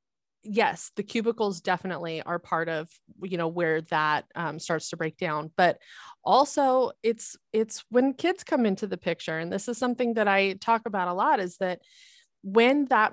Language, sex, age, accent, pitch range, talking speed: English, female, 30-49, American, 175-220 Hz, 185 wpm